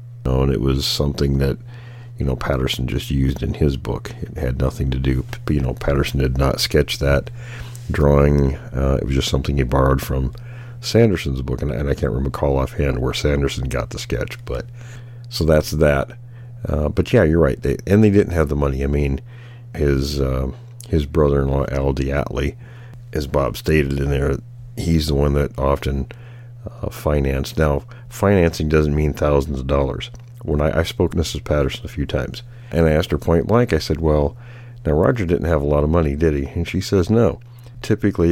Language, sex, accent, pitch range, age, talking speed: English, male, American, 70-115 Hz, 50-69, 195 wpm